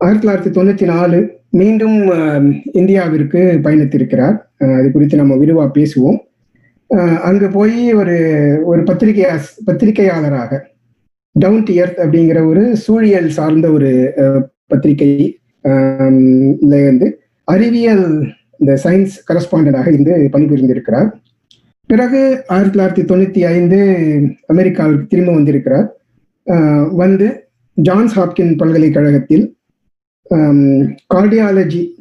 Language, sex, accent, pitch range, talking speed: Tamil, male, native, 140-185 Hz, 90 wpm